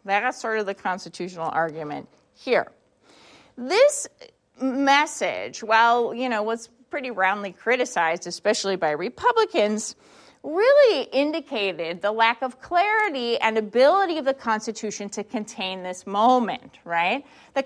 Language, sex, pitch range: English, female, 200-320 Hz